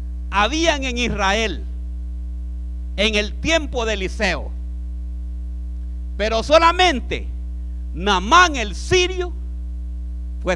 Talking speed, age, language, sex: 80 wpm, 50-69, Spanish, male